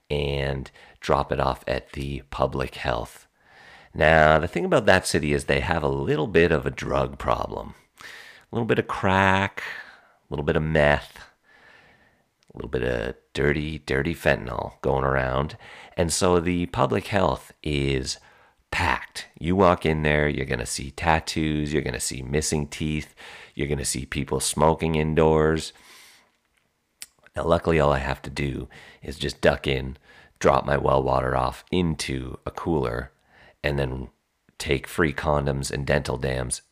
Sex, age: male, 40-59